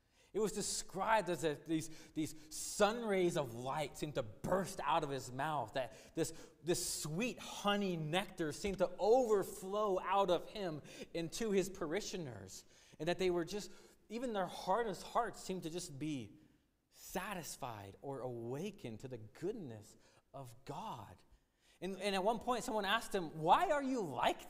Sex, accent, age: male, American, 30-49